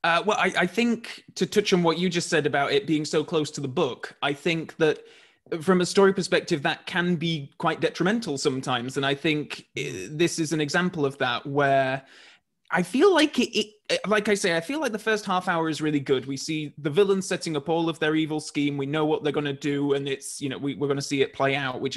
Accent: British